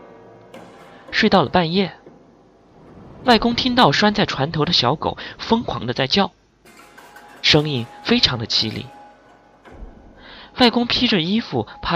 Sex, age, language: male, 20-39, Chinese